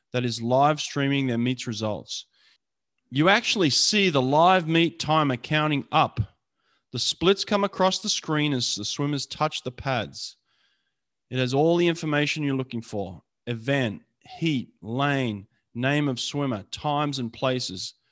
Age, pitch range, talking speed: 30-49, 120-155 Hz, 150 wpm